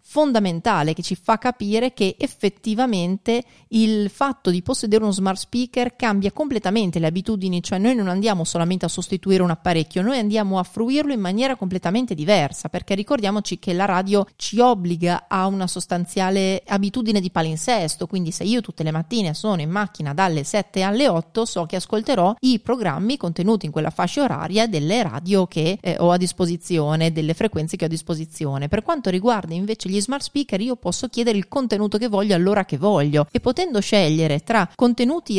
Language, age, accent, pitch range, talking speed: Italian, 30-49, native, 175-225 Hz, 180 wpm